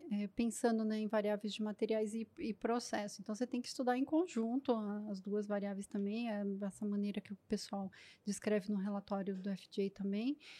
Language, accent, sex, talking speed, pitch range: Portuguese, Brazilian, female, 185 wpm, 210-255 Hz